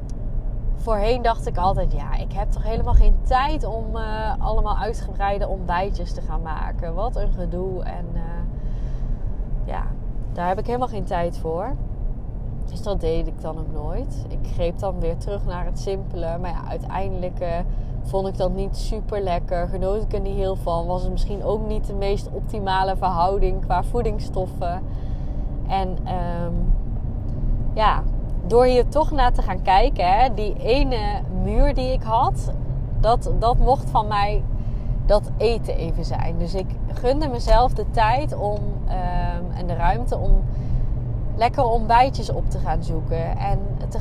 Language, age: Dutch, 20-39